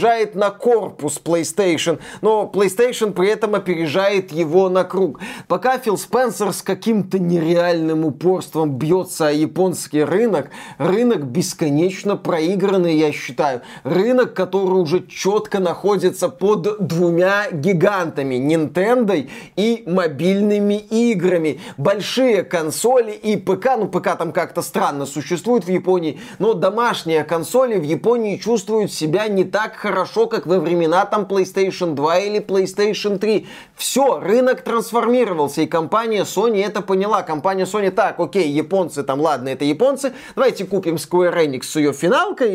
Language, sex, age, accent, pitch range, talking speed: Russian, male, 20-39, native, 165-210 Hz, 135 wpm